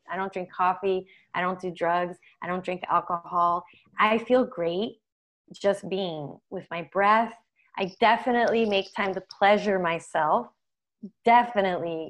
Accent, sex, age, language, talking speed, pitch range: American, female, 20-39, English, 140 wpm, 175-205 Hz